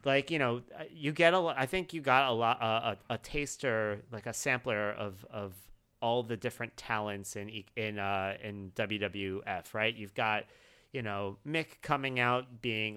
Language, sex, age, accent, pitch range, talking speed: English, male, 30-49, American, 110-140 Hz, 175 wpm